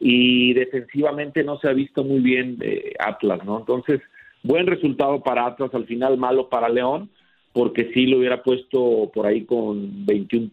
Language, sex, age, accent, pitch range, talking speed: Spanish, male, 40-59, Mexican, 120-160 Hz, 170 wpm